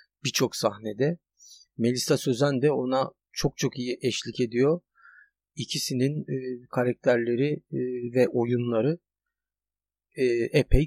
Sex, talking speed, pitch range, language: male, 90 wpm, 120-150 Hz, Turkish